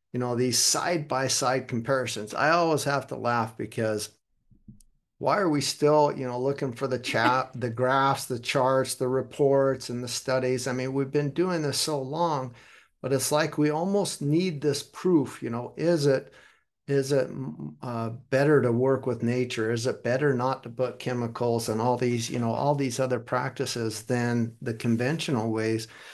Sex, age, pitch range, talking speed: male, 50-69, 115-135 Hz, 180 wpm